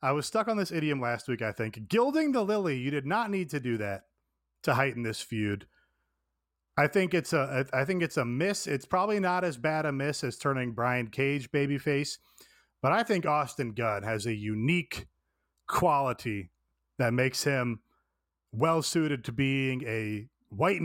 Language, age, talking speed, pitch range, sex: English, 30-49, 180 wpm, 115-160 Hz, male